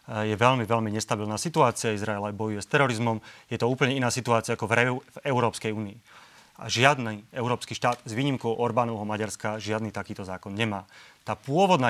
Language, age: Slovak, 30-49